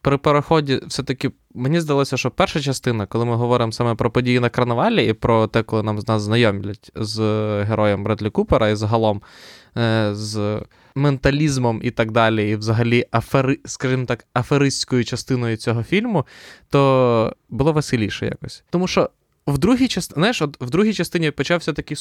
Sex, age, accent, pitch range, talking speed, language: male, 20-39, native, 120-155 Hz, 160 wpm, Ukrainian